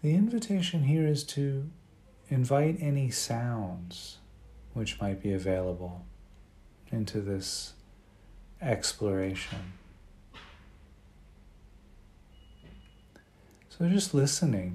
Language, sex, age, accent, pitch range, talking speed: English, male, 40-59, American, 95-110 Hz, 75 wpm